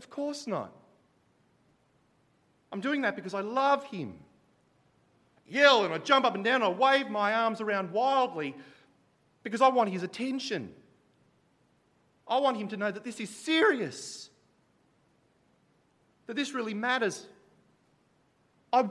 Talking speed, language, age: 140 wpm, English, 40-59